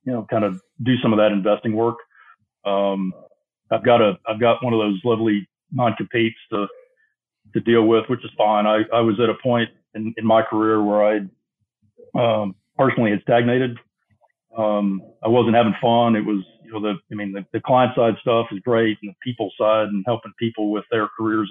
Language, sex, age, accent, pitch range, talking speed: English, male, 40-59, American, 105-115 Hz, 205 wpm